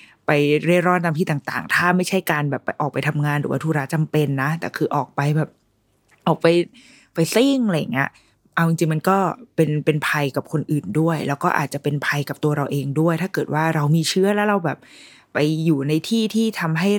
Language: Thai